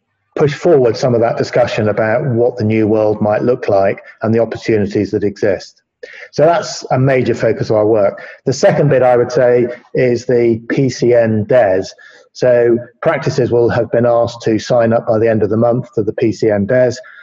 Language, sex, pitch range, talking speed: English, male, 110-125 Hz, 195 wpm